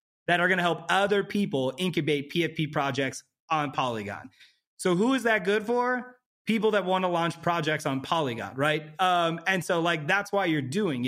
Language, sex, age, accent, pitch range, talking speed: English, male, 30-49, American, 145-190 Hz, 180 wpm